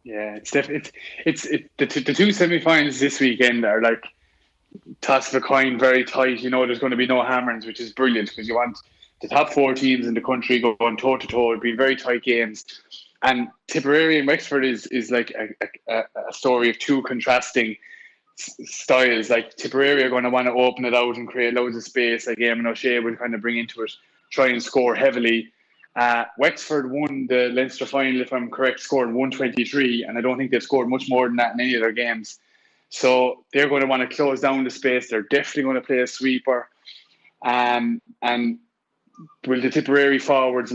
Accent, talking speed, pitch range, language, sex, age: Irish, 215 wpm, 120-135 Hz, English, male, 20-39